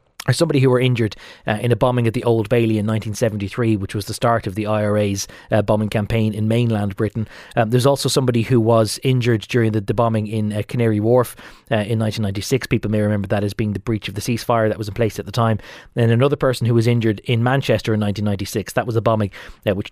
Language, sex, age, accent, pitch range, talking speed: English, male, 20-39, Irish, 110-140 Hz, 240 wpm